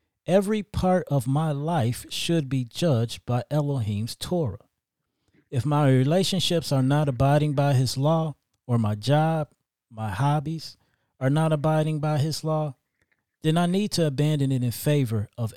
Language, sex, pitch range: English, male, 115-145 Hz